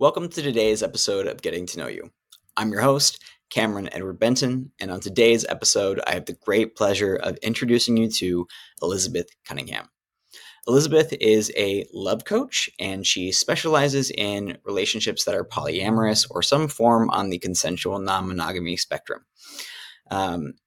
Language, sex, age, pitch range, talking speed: English, male, 20-39, 90-120 Hz, 150 wpm